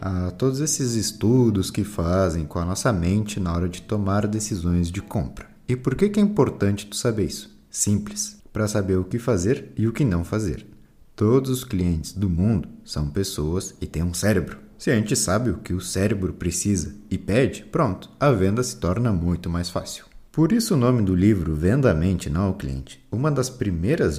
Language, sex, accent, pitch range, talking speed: Portuguese, male, Brazilian, 85-120 Hz, 200 wpm